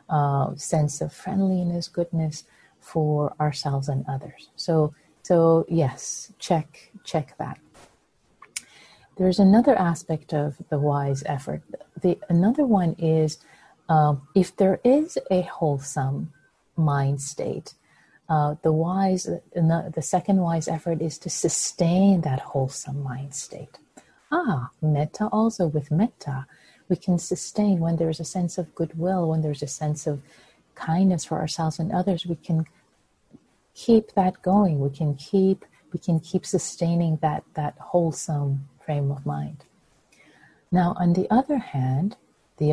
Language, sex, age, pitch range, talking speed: English, female, 30-49, 145-180 Hz, 135 wpm